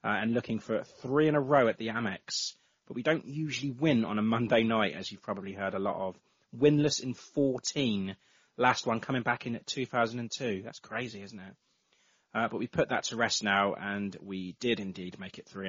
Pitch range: 100-125 Hz